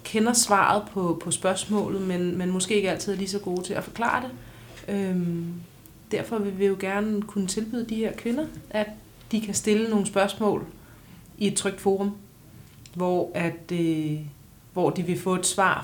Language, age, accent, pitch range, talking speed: Danish, 30-49, native, 160-200 Hz, 170 wpm